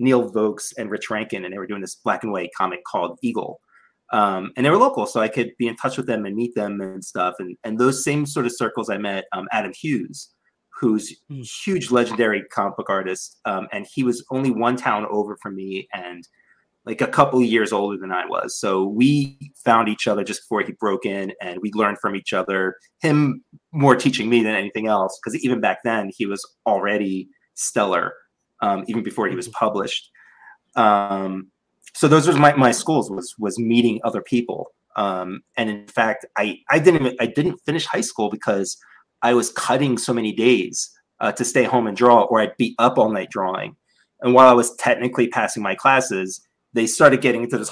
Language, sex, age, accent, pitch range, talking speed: English, male, 30-49, American, 100-125 Hz, 210 wpm